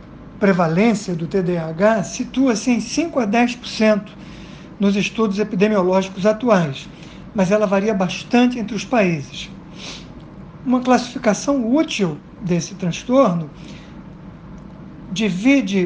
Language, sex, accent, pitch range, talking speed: Portuguese, male, Brazilian, 175-220 Hz, 95 wpm